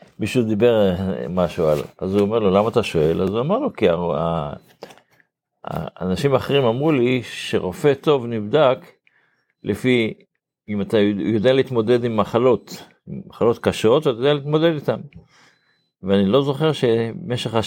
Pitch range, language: 105-140 Hz, Hebrew